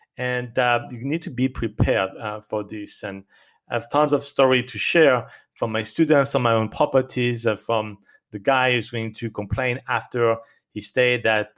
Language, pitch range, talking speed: English, 105-130 Hz, 190 wpm